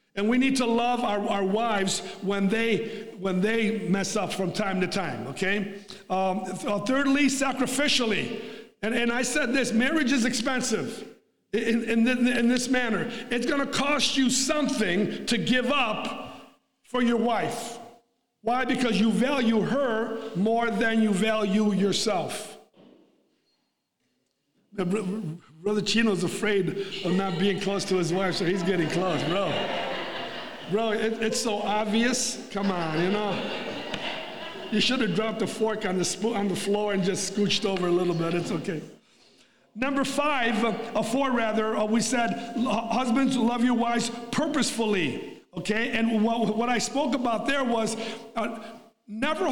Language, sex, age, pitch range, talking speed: English, male, 50-69, 205-245 Hz, 155 wpm